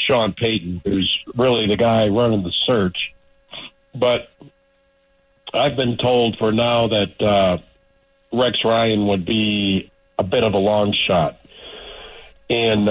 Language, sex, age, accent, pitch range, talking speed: English, male, 50-69, American, 105-130 Hz, 130 wpm